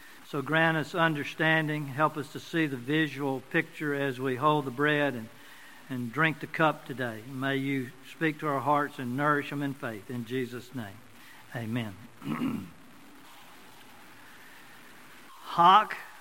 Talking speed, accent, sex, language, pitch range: 140 wpm, American, male, English, 135-165 Hz